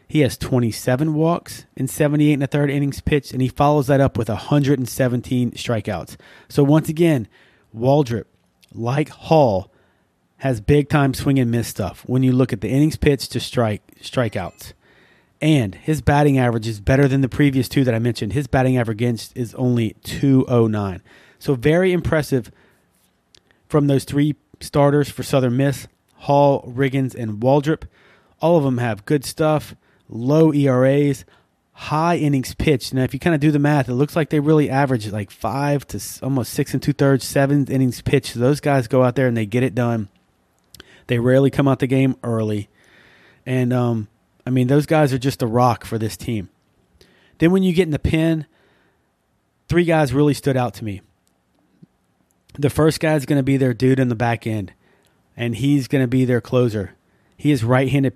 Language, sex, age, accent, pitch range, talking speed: English, male, 30-49, American, 120-145 Hz, 185 wpm